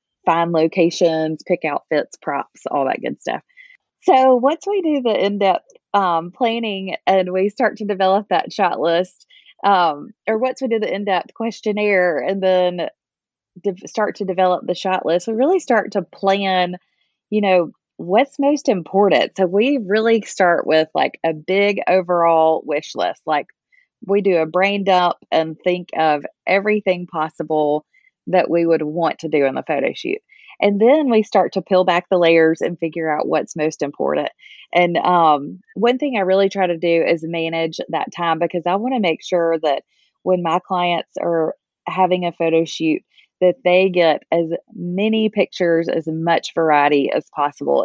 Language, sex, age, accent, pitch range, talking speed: English, female, 20-39, American, 165-205 Hz, 170 wpm